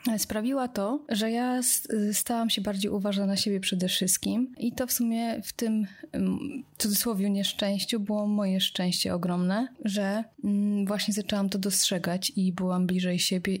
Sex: female